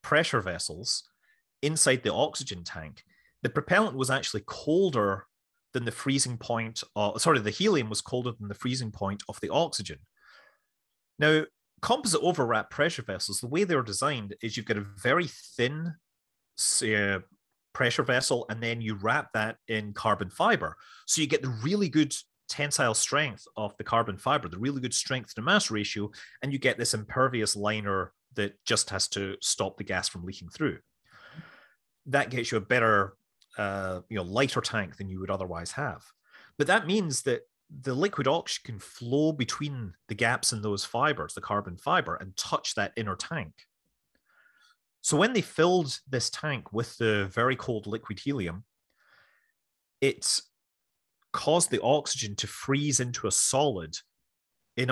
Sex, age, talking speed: male, 30-49, 165 wpm